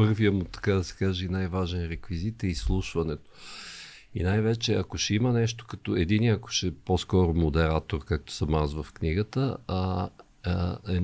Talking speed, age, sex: 165 wpm, 50-69, male